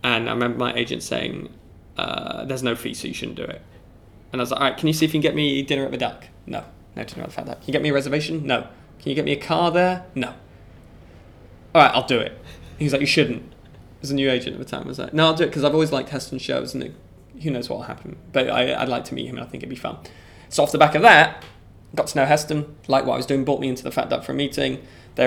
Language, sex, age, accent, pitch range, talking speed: English, male, 10-29, British, 120-140 Hz, 310 wpm